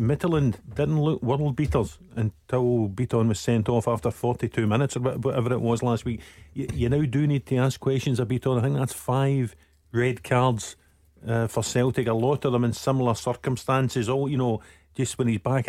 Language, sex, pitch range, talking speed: English, male, 120-135 Hz, 200 wpm